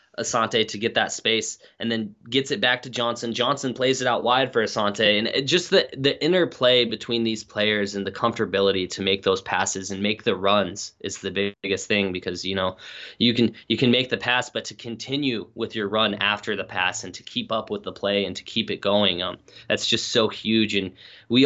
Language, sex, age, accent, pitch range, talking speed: English, male, 20-39, American, 100-115 Hz, 225 wpm